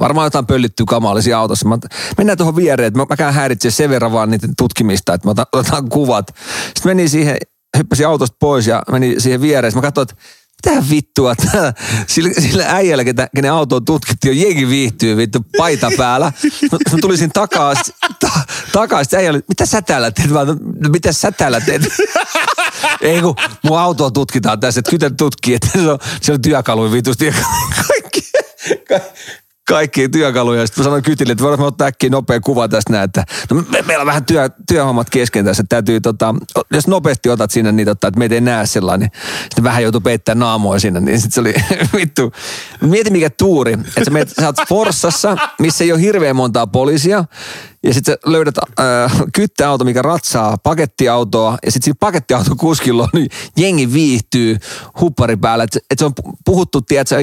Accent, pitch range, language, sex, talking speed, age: native, 115-155 Hz, Finnish, male, 175 wpm, 40-59